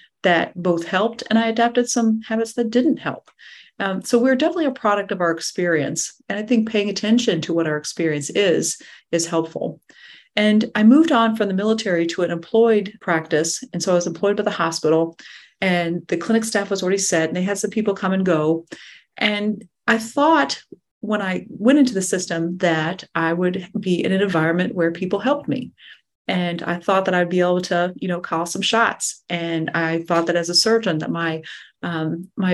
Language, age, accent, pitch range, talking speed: English, 40-59, American, 170-220 Hz, 205 wpm